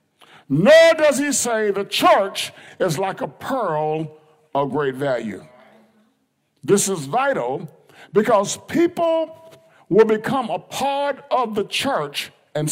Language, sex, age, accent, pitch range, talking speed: English, male, 50-69, American, 200-295 Hz, 125 wpm